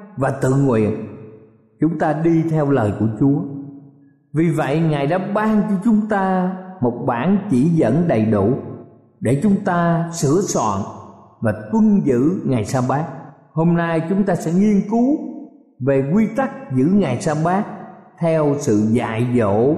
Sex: male